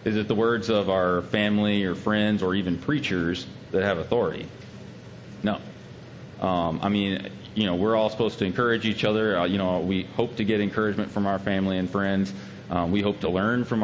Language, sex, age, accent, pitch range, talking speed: English, male, 30-49, American, 95-110 Hz, 205 wpm